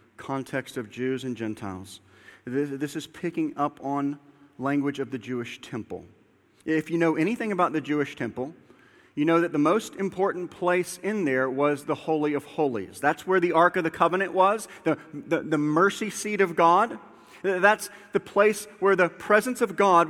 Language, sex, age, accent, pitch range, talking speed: English, male, 40-59, American, 150-210 Hz, 180 wpm